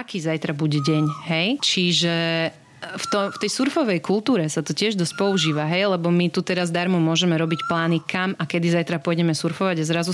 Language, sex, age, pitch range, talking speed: Slovak, female, 30-49, 165-195 Hz, 200 wpm